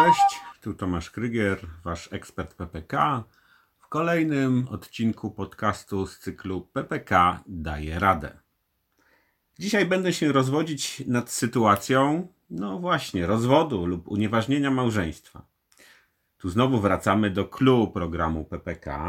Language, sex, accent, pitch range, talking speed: Polish, male, native, 90-130 Hz, 110 wpm